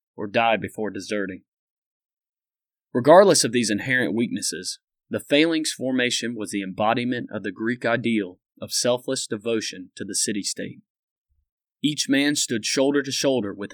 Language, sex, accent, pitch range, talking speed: English, male, American, 110-140 Hz, 140 wpm